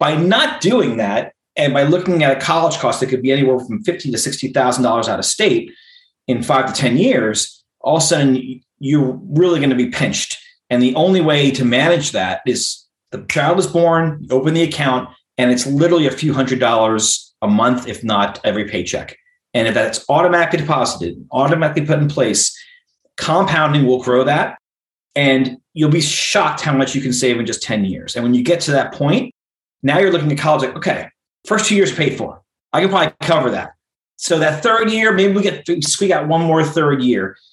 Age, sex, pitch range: 30-49, male, 125-165 Hz